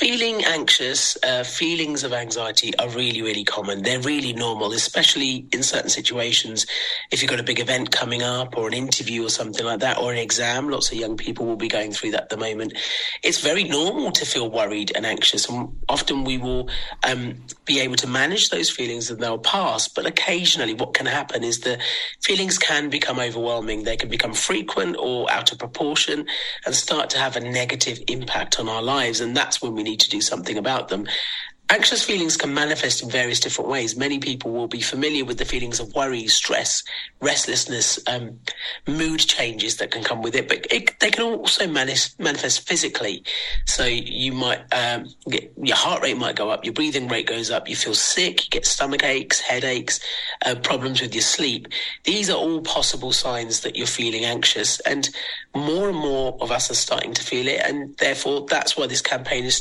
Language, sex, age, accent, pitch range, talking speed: English, male, 40-59, British, 115-145 Hz, 200 wpm